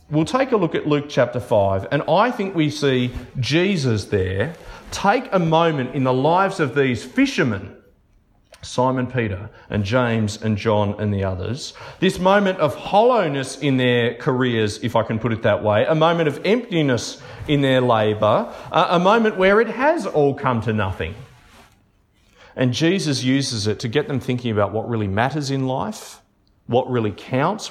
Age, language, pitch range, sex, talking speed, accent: 40-59, English, 105-140 Hz, male, 175 wpm, Australian